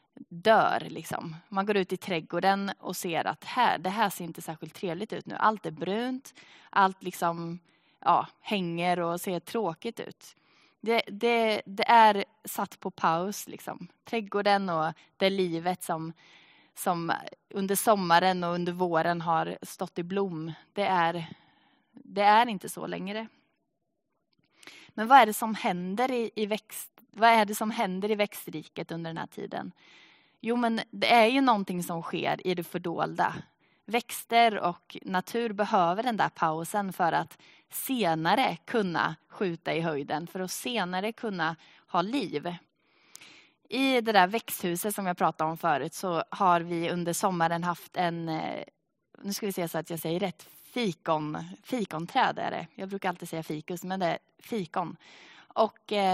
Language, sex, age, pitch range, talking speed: Swedish, female, 20-39, 170-215 Hz, 160 wpm